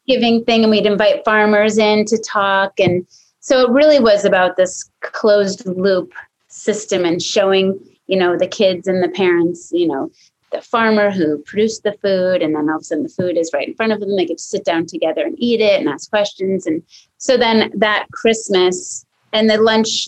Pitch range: 190-230 Hz